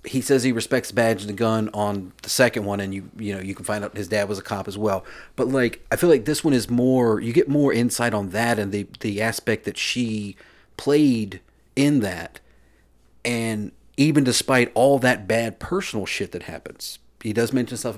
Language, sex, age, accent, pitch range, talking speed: English, male, 40-59, American, 100-130 Hz, 220 wpm